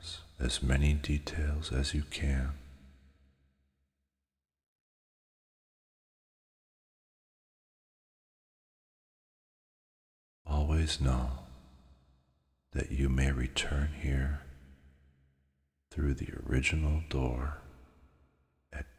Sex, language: male, English